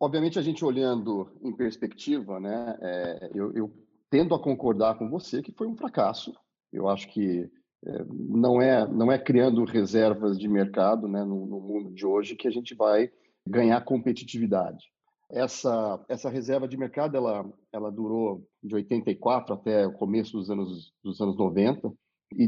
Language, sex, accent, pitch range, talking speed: Portuguese, male, Brazilian, 110-155 Hz, 165 wpm